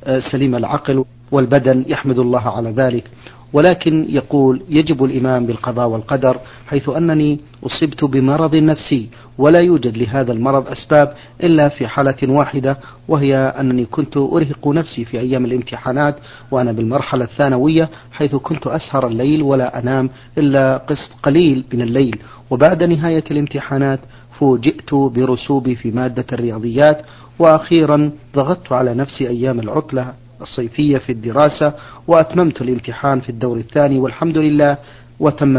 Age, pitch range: 40-59, 125-145 Hz